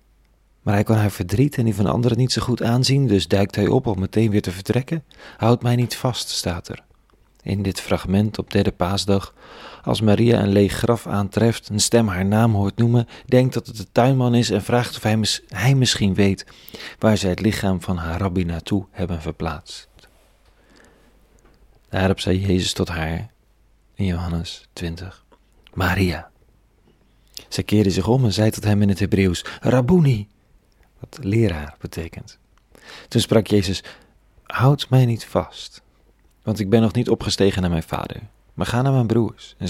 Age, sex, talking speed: 40-59, male, 175 wpm